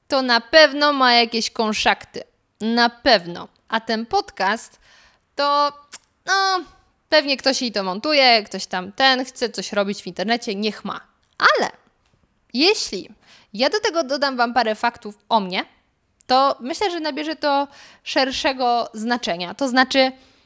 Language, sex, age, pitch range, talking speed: Polish, female, 20-39, 225-290 Hz, 140 wpm